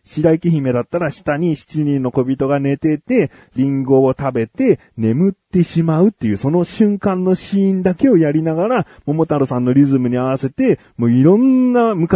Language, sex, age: Japanese, male, 40-59